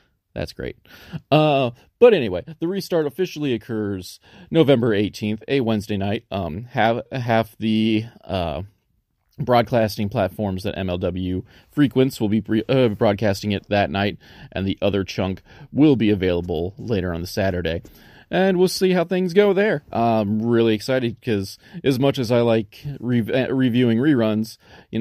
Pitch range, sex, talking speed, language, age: 100-140 Hz, male, 155 wpm, English, 30-49